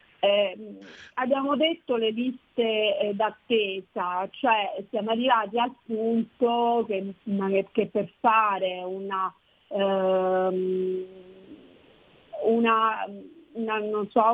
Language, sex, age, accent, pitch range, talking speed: Italian, female, 40-59, native, 200-240 Hz, 65 wpm